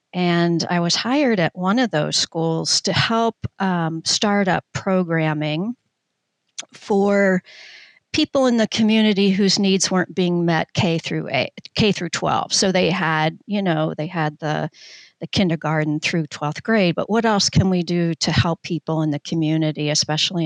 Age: 50-69